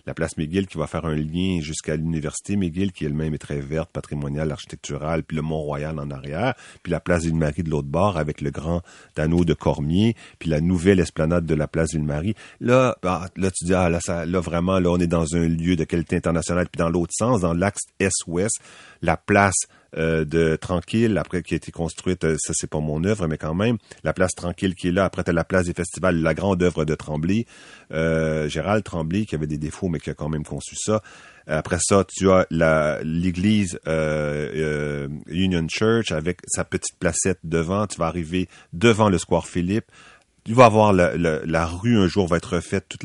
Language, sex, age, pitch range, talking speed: French, male, 40-59, 80-95 Hz, 210 wpm